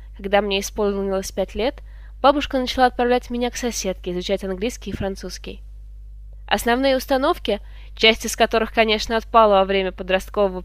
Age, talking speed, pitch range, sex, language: 20-39, 140 wpm, 195-255 Hz, female, Russian